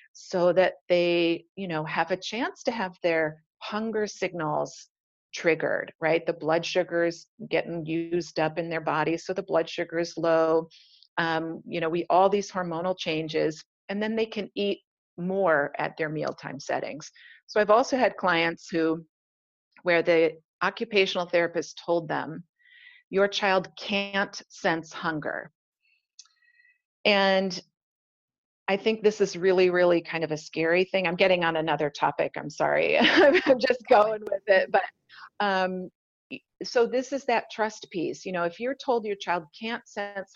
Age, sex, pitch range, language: 40-59, female, 165-200 Hz, English